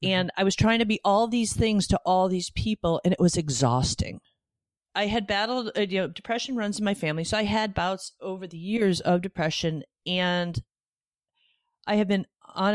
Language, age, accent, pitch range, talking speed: English, 40-59, American, 150-195 Hz, 195 wpm